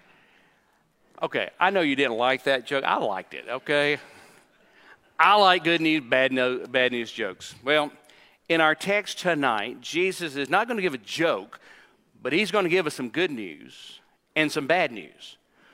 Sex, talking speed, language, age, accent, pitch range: male, 180 wpm, English, 50-69, American, 150-200 Hz